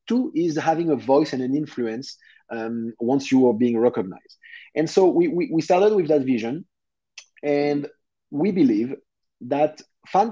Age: 30-49